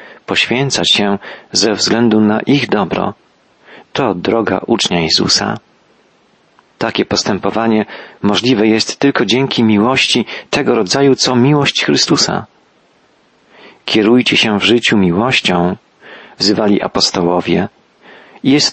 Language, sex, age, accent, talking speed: Polish, male, 40-59, native, 100 wpm